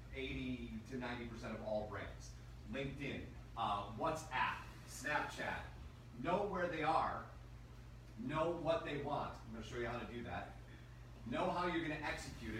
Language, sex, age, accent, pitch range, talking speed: English, male, 30-49, American, 110-150 Hz, 155 wpm